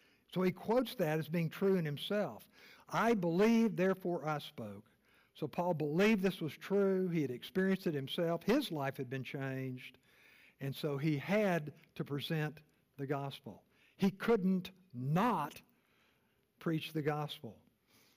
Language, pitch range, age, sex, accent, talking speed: English, 150-200 Hz, 60-79, male, American, 145 wpm